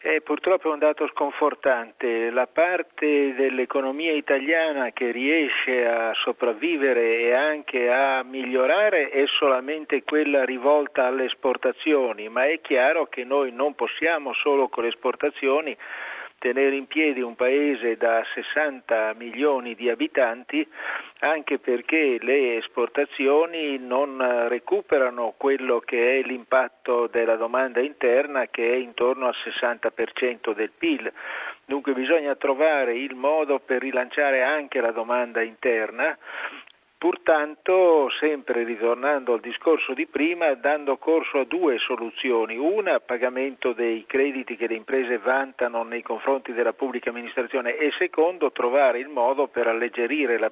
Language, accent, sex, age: Italian, native, male, 50-69